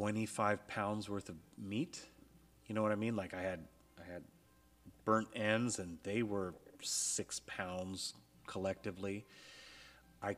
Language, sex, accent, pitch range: English, male, American, 95-120 Hz